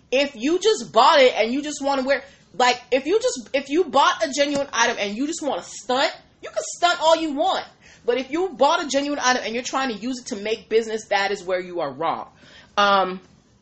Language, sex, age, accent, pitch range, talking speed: English, female, 30-49, American, 200-280 Hz, 245 wpm